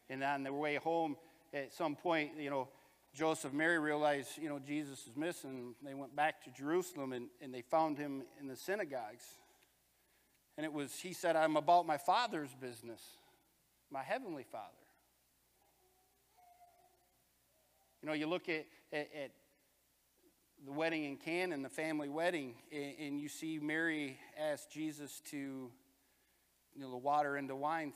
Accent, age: American, 50-69